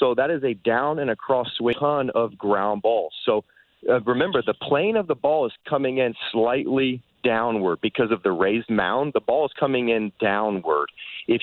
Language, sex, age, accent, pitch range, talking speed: English, male, 30-49, American, 110-140 Hz, 195 wpm